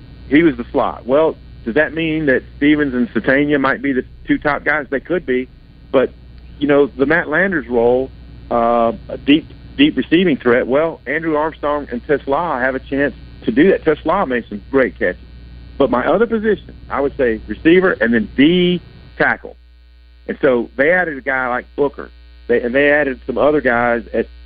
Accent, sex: American, male